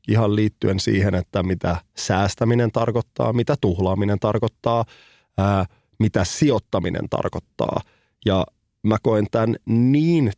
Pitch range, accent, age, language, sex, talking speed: 95-120 Hz, native, 30-49, Finnish, male, 105 wpm